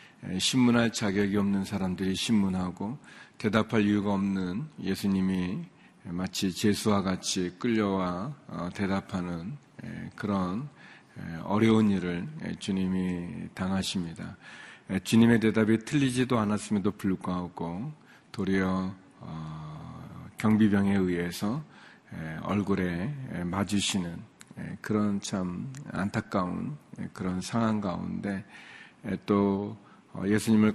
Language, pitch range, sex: Korean, 95-110 Hz, male